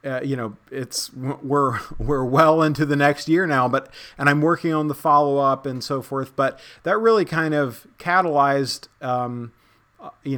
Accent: American